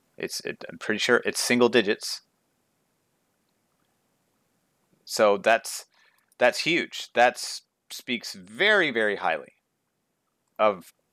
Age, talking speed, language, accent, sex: 30-49, 95 wpm, English, American, male